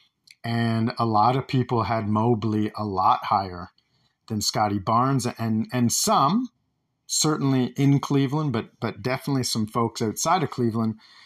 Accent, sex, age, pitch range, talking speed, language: American, male, 50-69, 105-125 Hz, 145 wpm, English